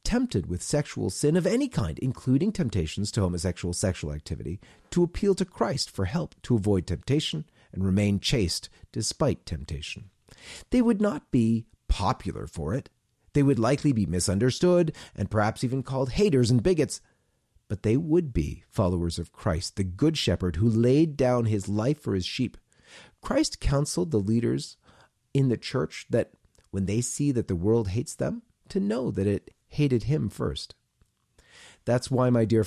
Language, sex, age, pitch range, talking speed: English, male, 40-59, 100-145 Hz, 165 wpm